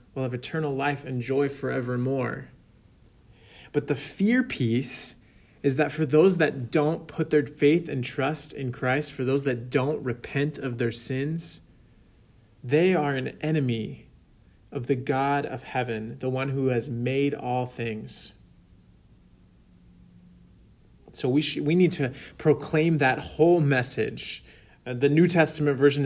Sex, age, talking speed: male, 30-49, 145 wpm